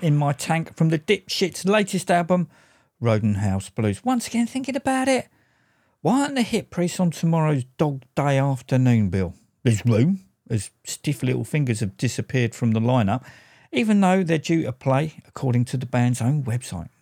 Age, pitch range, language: 50-69, 120-175 Hz, English